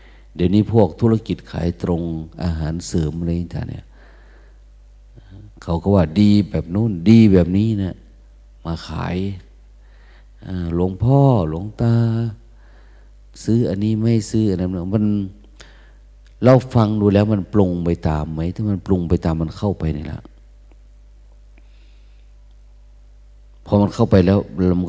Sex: male